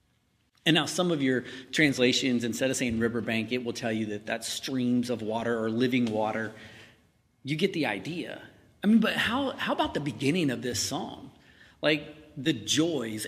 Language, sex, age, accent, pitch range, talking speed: English, male, 30-49, American, 125-185 Hz, 180 wpm